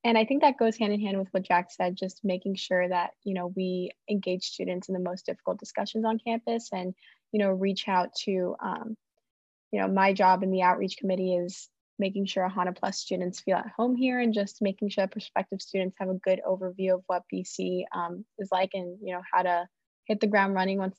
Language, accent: English, American